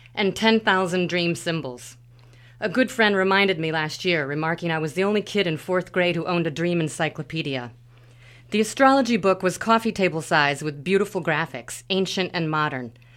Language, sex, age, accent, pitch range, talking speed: English, female, 40-59, American, 130-195 Hz, 175 wpm